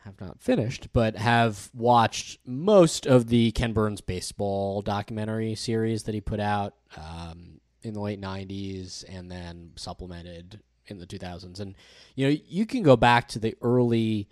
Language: English